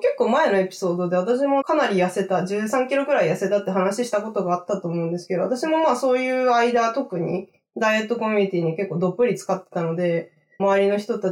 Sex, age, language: female, 20-39, Japanese